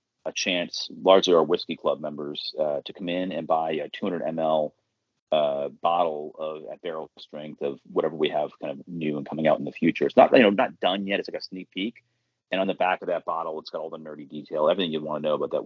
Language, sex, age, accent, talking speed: English, male, 30-49, American, 260 wpm